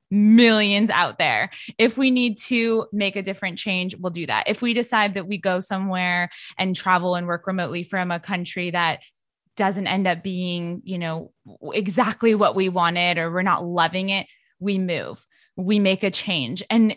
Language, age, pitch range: English, 20-39, 185-240 Hz